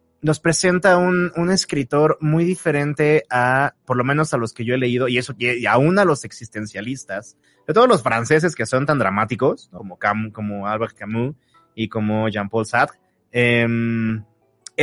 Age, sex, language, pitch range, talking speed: 30-49, male, Spanish, 115-155 Hz, 175 wpm